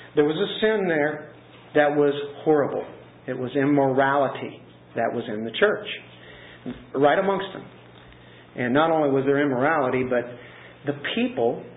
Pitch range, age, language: 130-160 Hz, 50-69, English